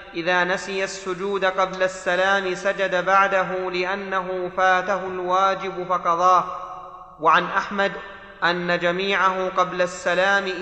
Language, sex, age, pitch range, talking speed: Arabic, male, 30-49, 180-195 Hz, 95 wpm